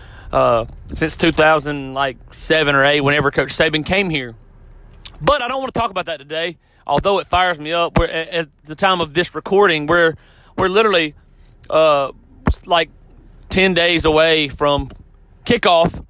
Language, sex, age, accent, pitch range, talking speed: English, male, 30-49, American, 145-200 Hz, 160 wpm